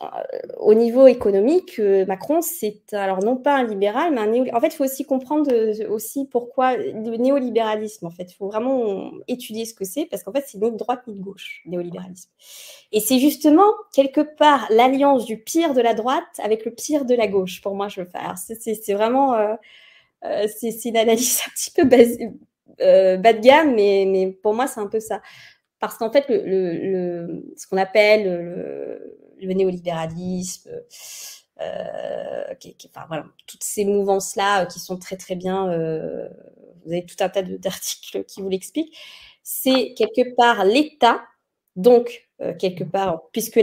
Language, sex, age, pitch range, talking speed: French, female, 20-39, 195-270 Hz, 180 wpm